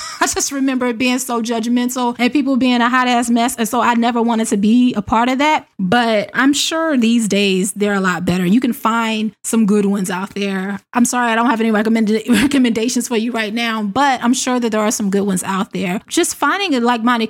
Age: 20-39